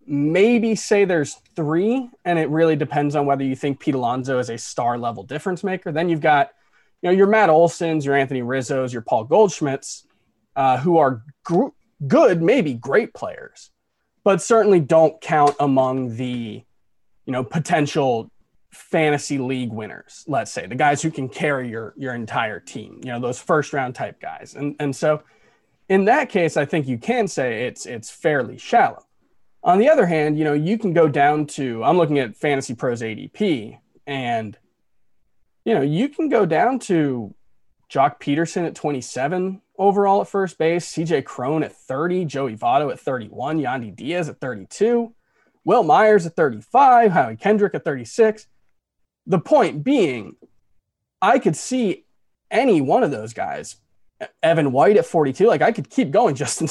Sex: male